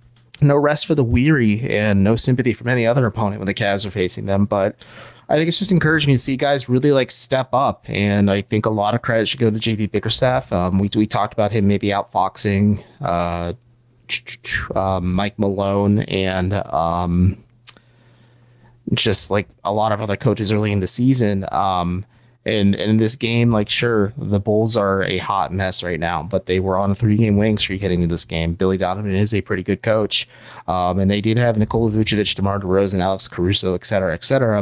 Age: 30-49